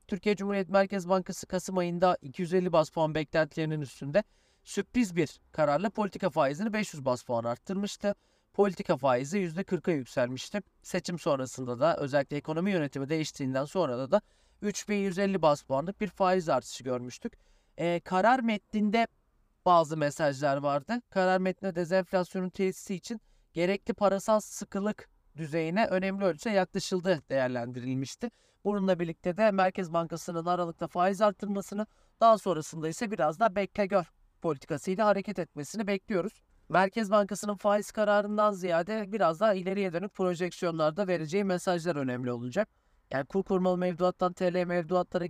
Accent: native